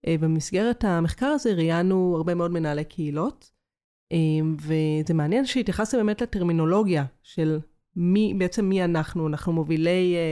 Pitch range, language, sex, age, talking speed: 160-200 Hz, Hebrew, female, 30-49, 115 wpm